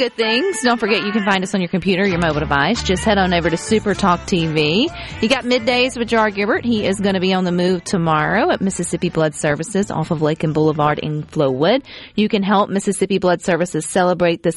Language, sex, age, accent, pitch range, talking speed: English, female, 40-59, American, 170-220 Hz, 235 wpm